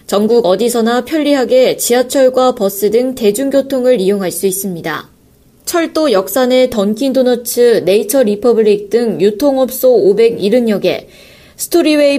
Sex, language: female, Korean